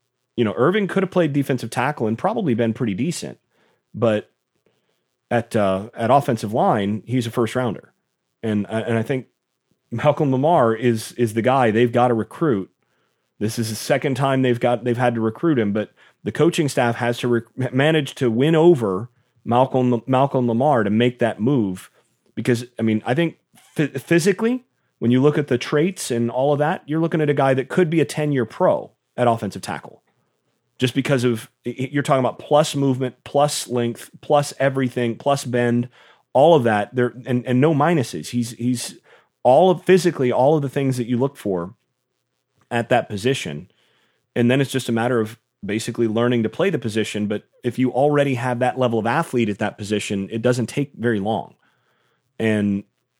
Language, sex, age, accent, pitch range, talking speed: English, male, 40-59, American, 115-140 Hz, 190 wpm